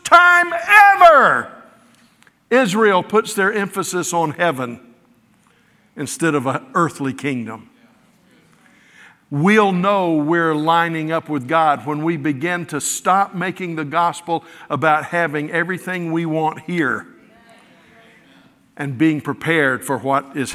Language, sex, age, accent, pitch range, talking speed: English, male, 60-79, American, 140-180 Hz, 115 wpm